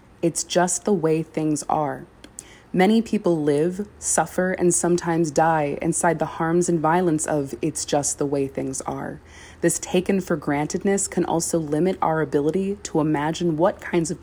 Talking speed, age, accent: 165 wpm, 20-39, American